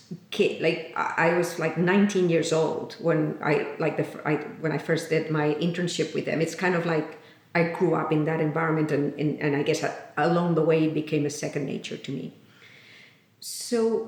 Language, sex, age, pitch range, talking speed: English, female, 40-59, 160-215 Hz, 200 wpm